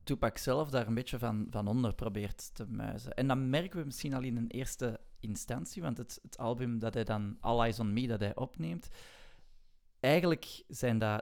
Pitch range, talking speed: 110-145 Hz, 205 wpm